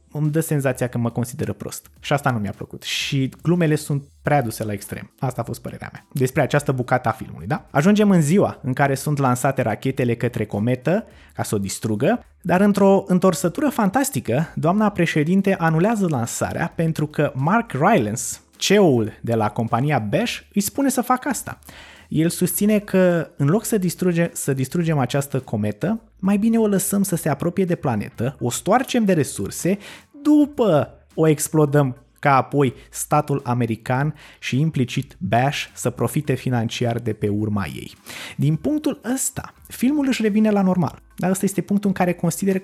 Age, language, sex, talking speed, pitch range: 20-39, Romanian, male, 170 wpm, 125-175 Hz